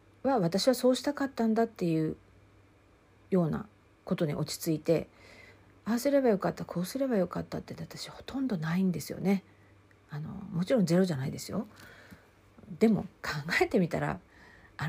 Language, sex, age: Japanese, female, 50-69